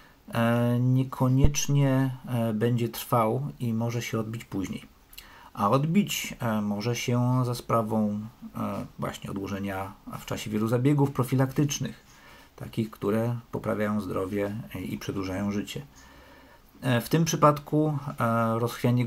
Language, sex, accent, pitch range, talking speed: Polish, male, native, 110-135 Hz, 100 wpm